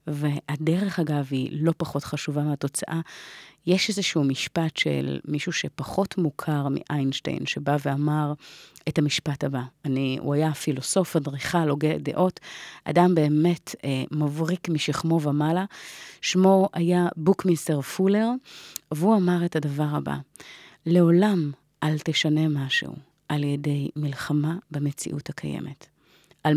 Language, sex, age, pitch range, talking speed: Hebrew, female, 30-49, 145-170 Hz, 115 wpm